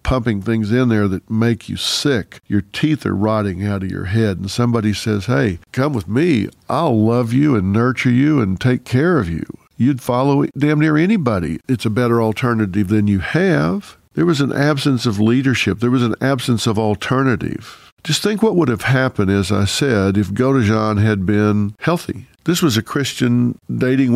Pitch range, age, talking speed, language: 100-130 Hz, 50-69, 190 wpm, English